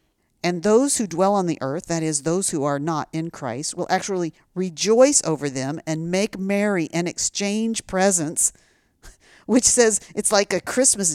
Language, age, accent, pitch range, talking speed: English, 50-69, American, 150-210 Hz, 170 wpm